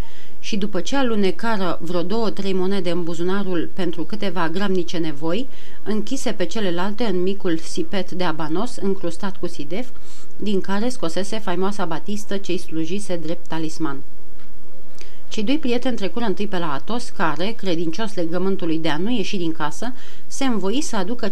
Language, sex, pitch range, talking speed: Romanian, female, 170-225 Hz, 155 wpm